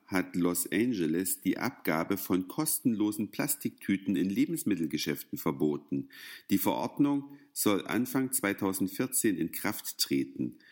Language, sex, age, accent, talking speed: German, male, 50-69, German, 105 wpm